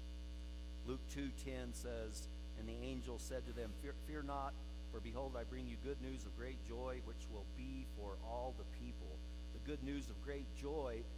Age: 50-69